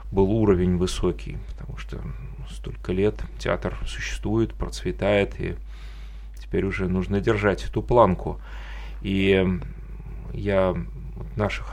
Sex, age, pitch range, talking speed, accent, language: male, 30-49, 85-110 Hz, 100 wpm, native, Russian